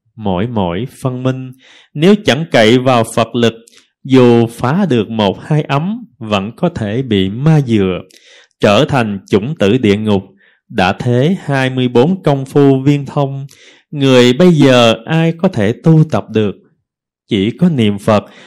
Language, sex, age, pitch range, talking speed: Vietnamese, male, 20-39, 110-150 Hz, 160 wpm